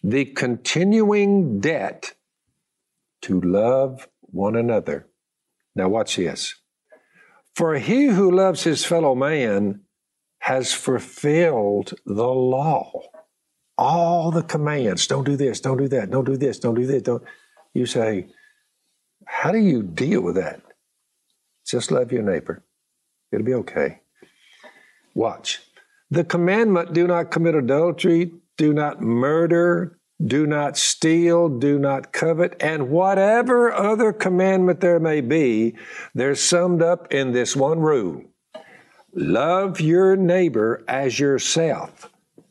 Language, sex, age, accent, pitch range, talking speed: English, male, 60-79, American, 135-175 Hz, 120 wpm